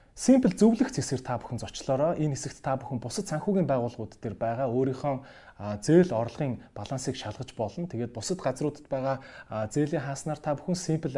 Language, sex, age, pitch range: Korean, male, 30-49, 115-150 Hz